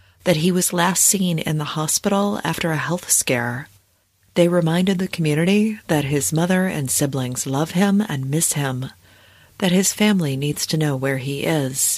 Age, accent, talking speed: 40-59, American, 175 wpm